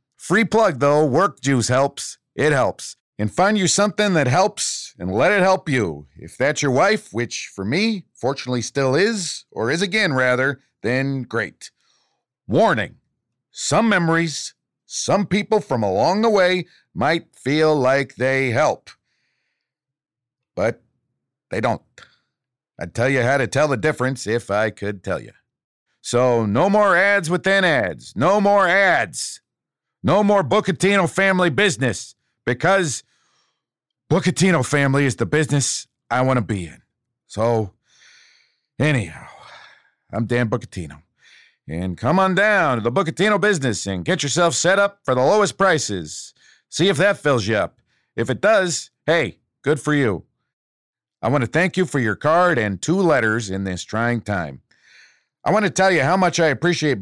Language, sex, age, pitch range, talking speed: English, male, 50-69, 120-185 Hz, 155 wpm